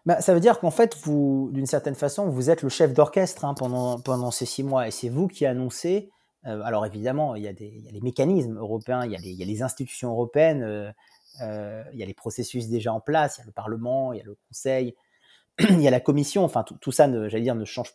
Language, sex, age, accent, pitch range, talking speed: French, male, 30-49, French, 120-150 Hz, 275 wpm